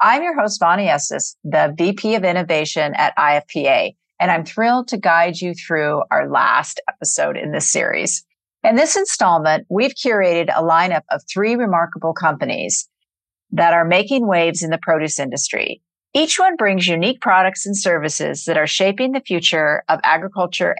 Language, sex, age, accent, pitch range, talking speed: English, female, 50-69, American, 160-215 Hz, 165 wpm